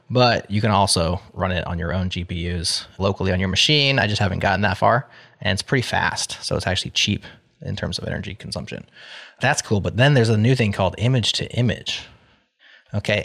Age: 20-39